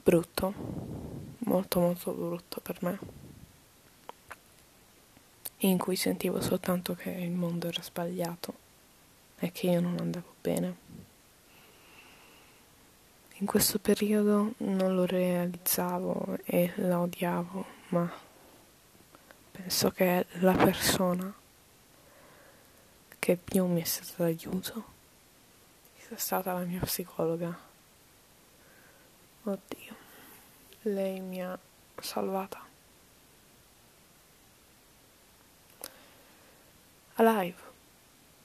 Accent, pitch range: native, 175-195 Hz